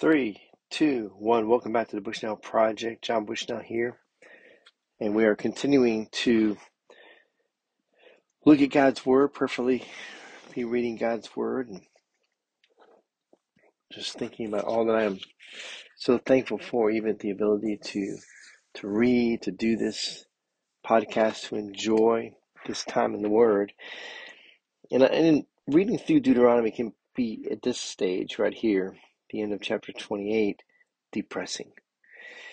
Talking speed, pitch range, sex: 135 wpm, 105-130 Hz, male